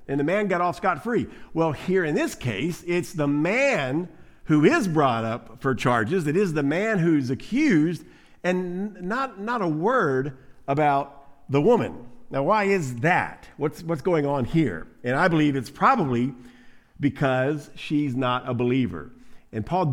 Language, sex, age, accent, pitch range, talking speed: English, male, 50-69, American, 135-175 Hz, 165 wpm